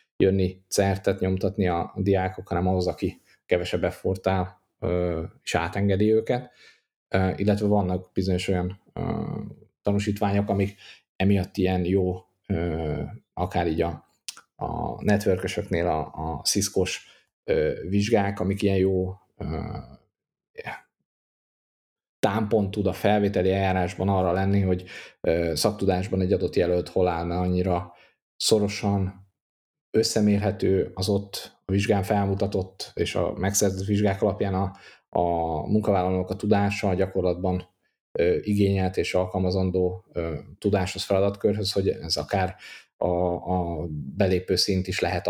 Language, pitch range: Hungarian, 90-100 Hz